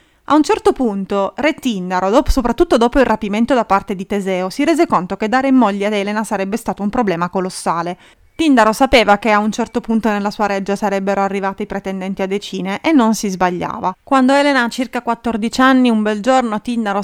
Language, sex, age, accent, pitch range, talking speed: Italian, female, 30-49, native, 195-260 Hz, 210 wpm